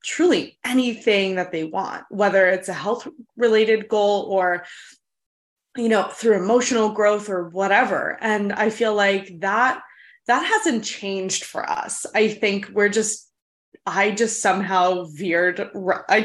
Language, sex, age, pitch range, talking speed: English, female, 20-39, 185-225 Hz, 140 wpm